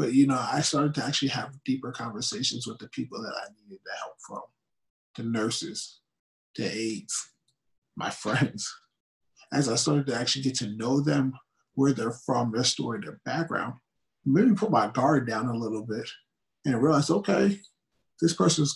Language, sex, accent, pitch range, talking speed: English, male, American, 120-150 Hz, 175 wpm